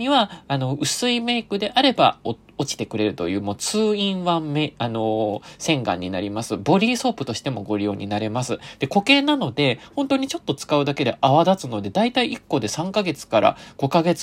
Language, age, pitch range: Japanese, 20-39, 115-195 Hz